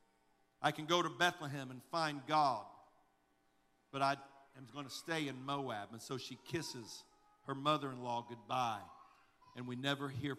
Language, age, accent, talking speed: English, 50-69, American, 155 wpm